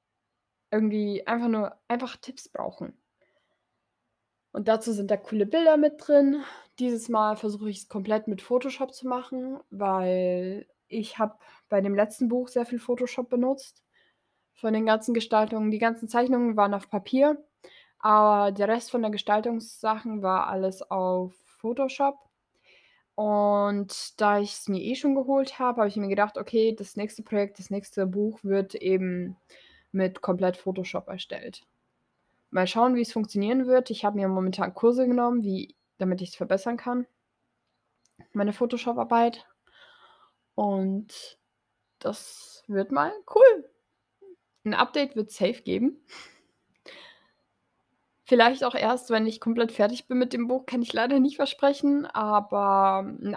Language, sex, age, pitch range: German, female, 20-39, 200-250 Hz